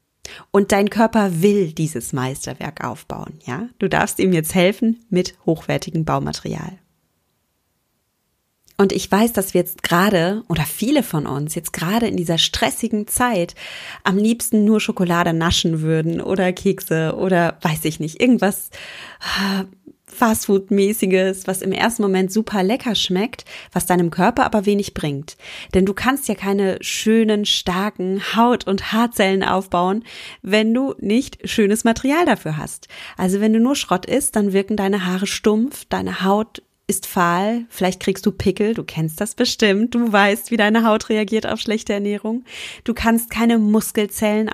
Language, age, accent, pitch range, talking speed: German, 30-49, German, 180-220 Hz, 155 wpm